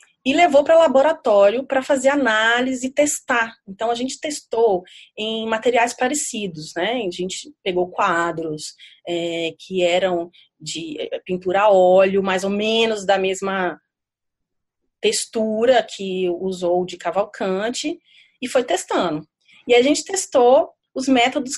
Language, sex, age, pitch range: Portuguese, female, 30-49, 190-270 Hz